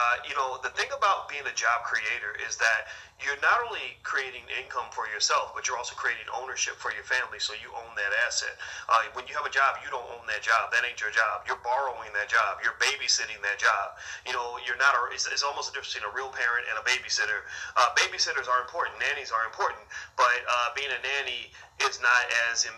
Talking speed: 225 wpm